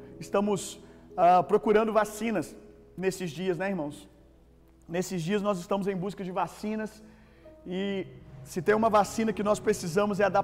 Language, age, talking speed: Gujarati, 40-59, 155 wpm